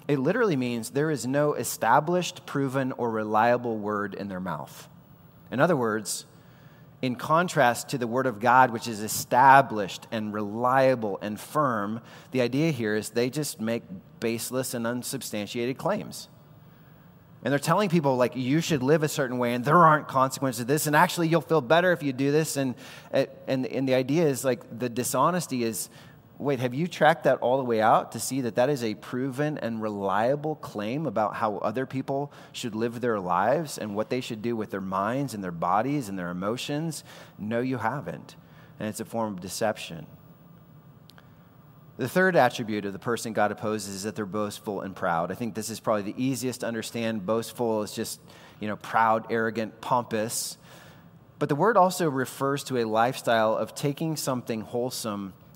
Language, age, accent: English, 30-49, American